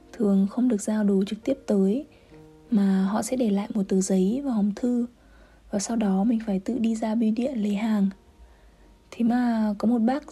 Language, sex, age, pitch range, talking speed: Vietnamese, female, 20-39, 200-250 Hz, 210 wpm